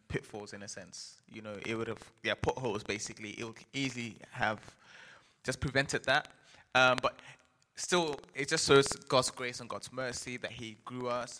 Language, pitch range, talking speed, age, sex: English, 110-130 Hz, 180 wpm, 20-39, male